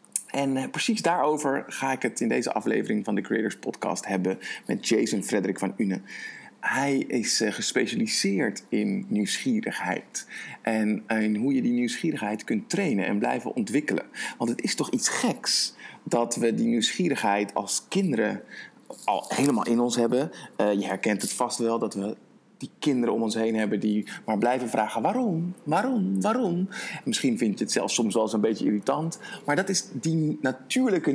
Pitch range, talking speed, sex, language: 120-175 Hz, 170 wpm, male, Dutch